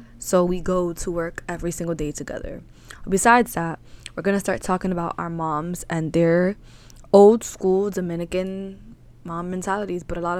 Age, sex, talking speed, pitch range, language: 20-39, female, 165 wpm, 165-185 Hz, English